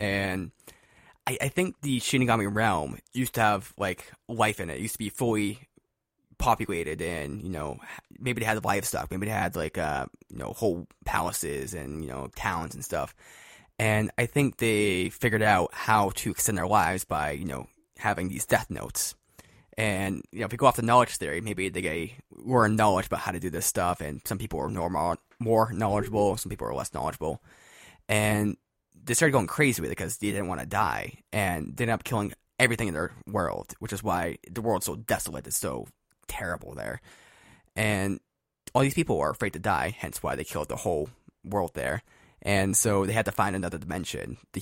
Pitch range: 90-115 Hz